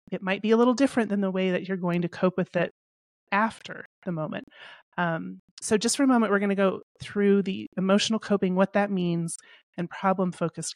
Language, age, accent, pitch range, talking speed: English, 30-49, American, 170-195 Hz, 210 wpm